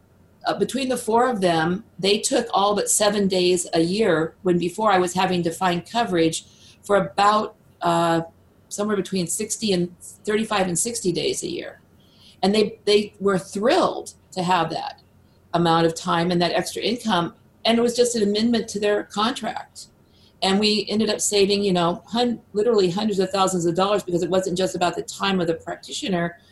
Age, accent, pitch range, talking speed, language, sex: 50-69, American, 170-215 Hz, 185 wpm, English, female